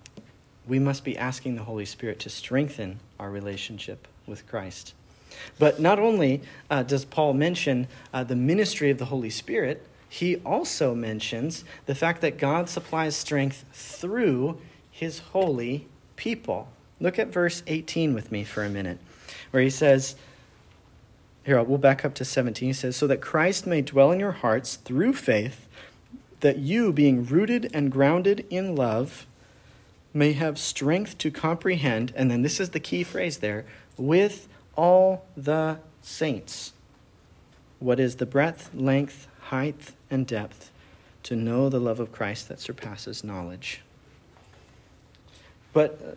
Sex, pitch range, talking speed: male, 120-155 Hz, 145 wpm